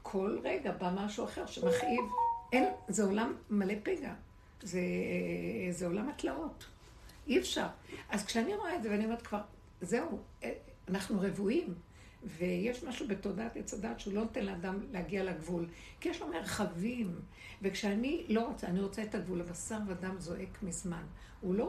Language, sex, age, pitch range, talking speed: Hebrew, female, 60-79, 180-230 Hz, 150 wpm